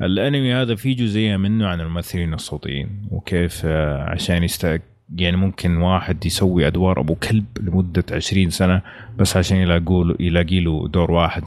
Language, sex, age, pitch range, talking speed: Arabic, male, 30-49, 85-110 Hz, 140 wpm